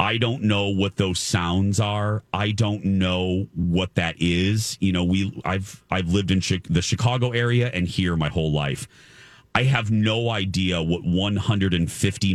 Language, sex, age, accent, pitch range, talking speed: English, male, 40-59, American, 80-105 Hz, 170 wpm